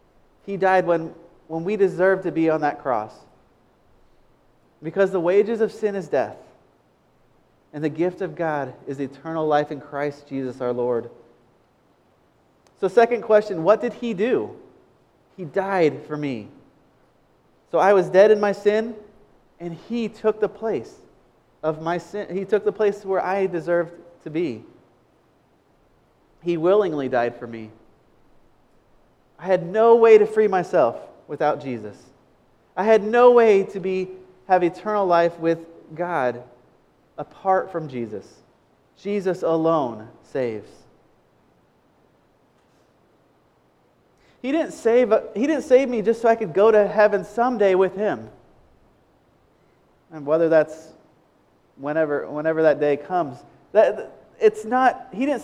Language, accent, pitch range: English, American, 160-215 Hz